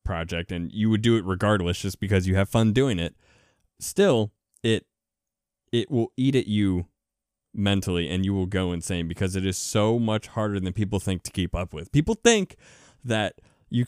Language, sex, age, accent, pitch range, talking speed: English, male, 20-39, American, 95-130 Hz, 190 wpm